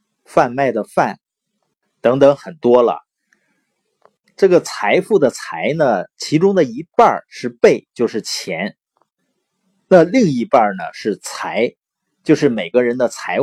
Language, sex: Chinese, male